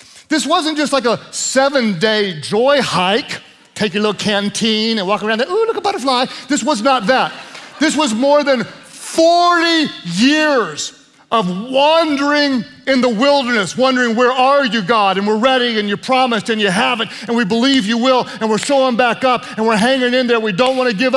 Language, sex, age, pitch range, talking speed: English, male, 40-59, 215-260 Hz, 200 wpm